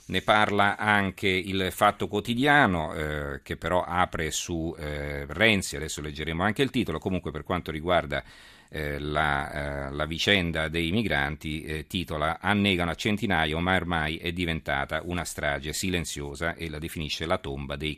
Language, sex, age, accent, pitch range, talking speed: Italian, male, 50-69, native, 75-95 Hz, 155 wpm